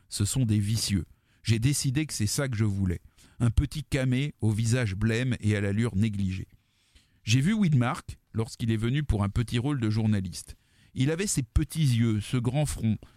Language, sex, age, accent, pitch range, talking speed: French, male, 40-59, French, 110-150 Hz, 190 wpm